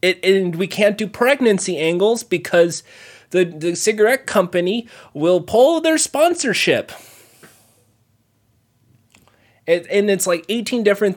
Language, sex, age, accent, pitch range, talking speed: English, male, 30-49, American, 160-230 Hz, 115 wpm